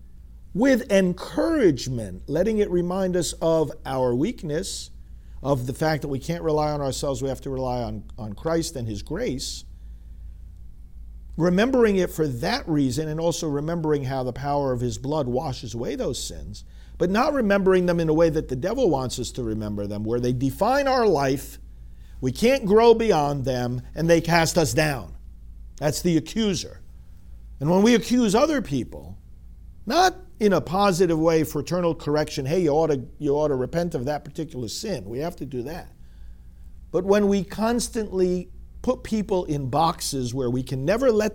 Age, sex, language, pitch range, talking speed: 50-69, male, English, 120-180 Hz, 175 wpm